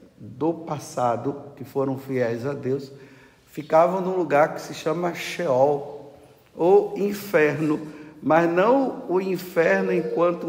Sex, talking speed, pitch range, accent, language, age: male, 120 wpm, 140-180 Hz, Brazilian, Portuguese, 50-69